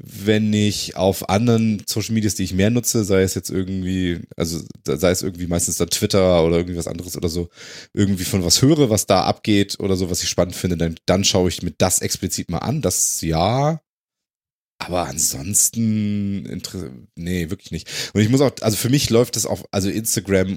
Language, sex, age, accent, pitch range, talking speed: German, male, 30-49, German, 95-115 Hz, 195 wpm